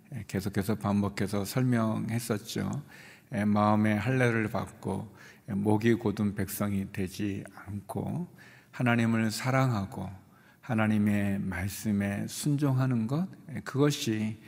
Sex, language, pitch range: male, Korean, 100-120 Hz